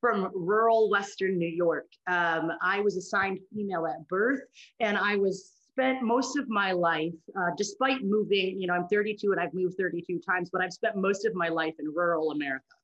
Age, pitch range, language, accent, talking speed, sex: 30-49, 170-205 Hz, English, American, 195 wpm, female